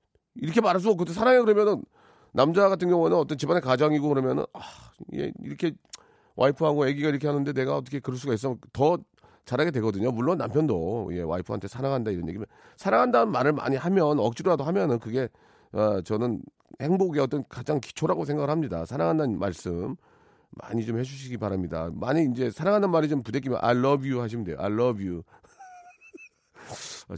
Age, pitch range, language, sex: 40-59, 120-175 Hz, Korean, male